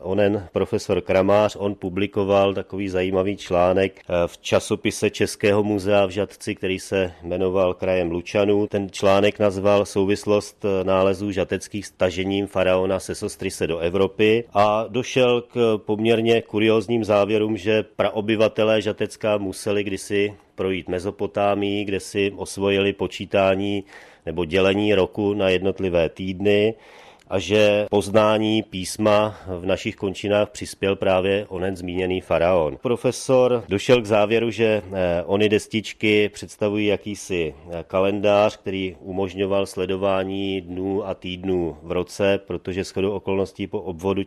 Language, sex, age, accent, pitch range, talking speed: Czech, male, 40-59, native, 95-105 Hz, 120 wpm